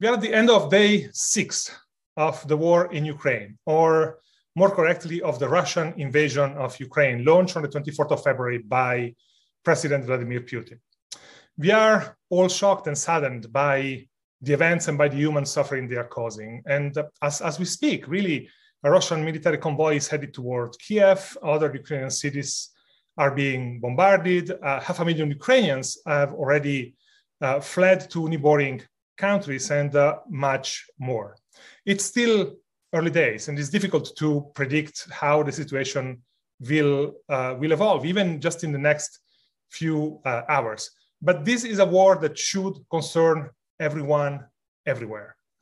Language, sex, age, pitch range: Korean, male, 30-49, 140-175 Hz